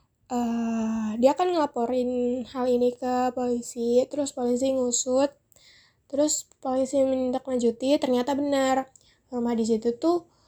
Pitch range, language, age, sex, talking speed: 230-260 Hz, Indonesian, 20-39, female, 115 wpm